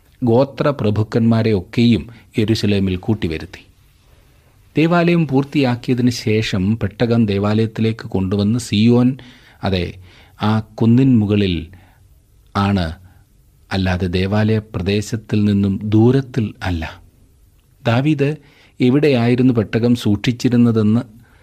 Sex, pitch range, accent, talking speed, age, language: male, 100-130 Hz, native, 75 wpm, 30-49, Malayalam